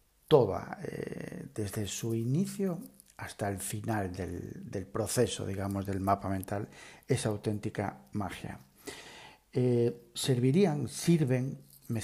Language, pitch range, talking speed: Spanish, 100-130 Hz, 110 wpm